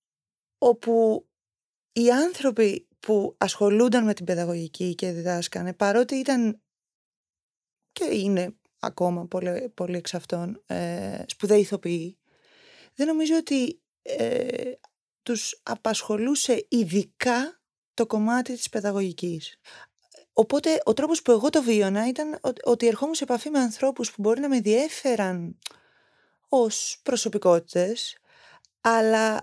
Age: 20-39